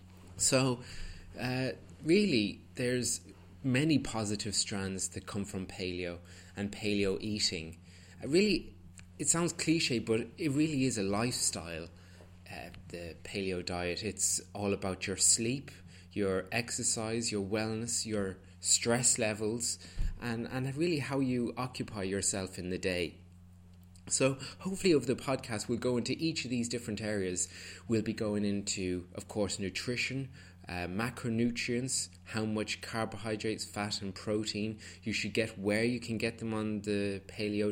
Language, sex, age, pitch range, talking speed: English, male, 20-39, 90-115 Hz, 145 wpm